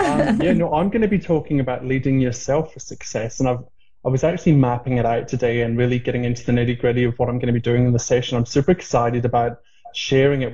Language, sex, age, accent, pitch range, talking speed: English, male, 20-39, British, 120-145 Hz, 255 wpm